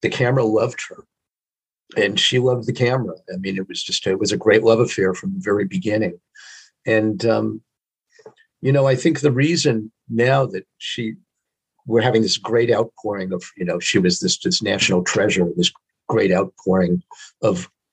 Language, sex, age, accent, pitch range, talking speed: English, male, 50-69, American, 110-145 Hz, 175 wpm